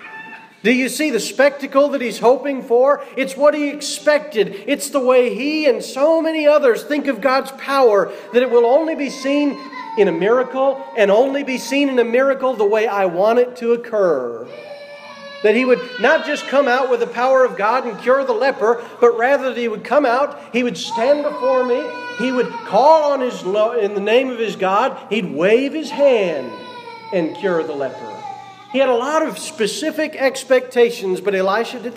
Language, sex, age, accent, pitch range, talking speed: English, male, 40-59, American, 230-295 Hz, 200 wpm